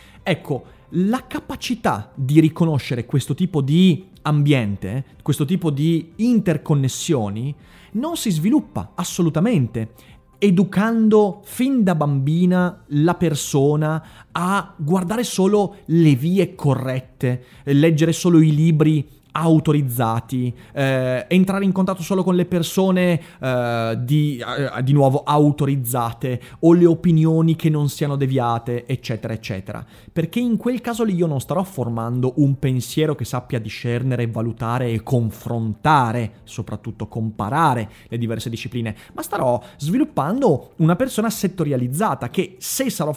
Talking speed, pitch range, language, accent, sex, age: 120 wpm, 125-180 Hz, Italian, native, male, 30-49